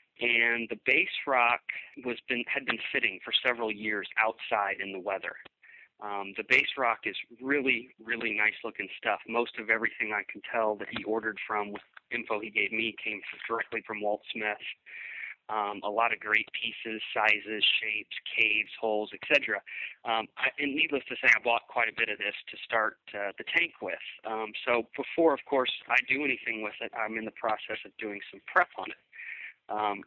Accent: American